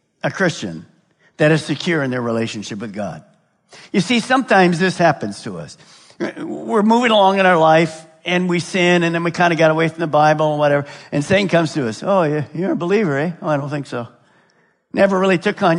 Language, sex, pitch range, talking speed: English, male, 150-200 Hz, 215 wpm